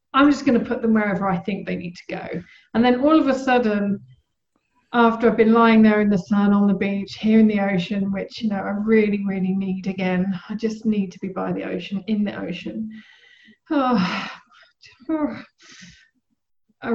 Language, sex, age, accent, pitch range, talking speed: English, female, 40-59, British, 195-230 Hz, 190 wpm